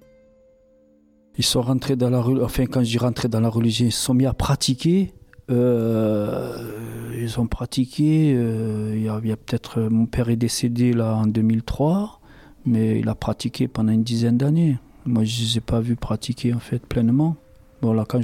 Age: 40-59